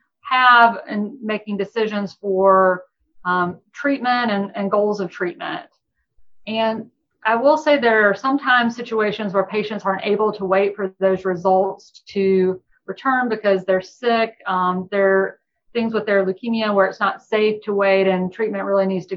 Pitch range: 195-220 Hz